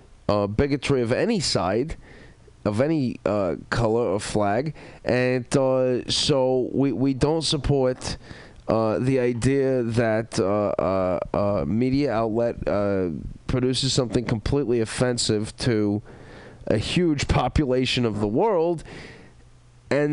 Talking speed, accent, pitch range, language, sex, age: 120 wpm, American, 105-135 Hz, English, male, 30-49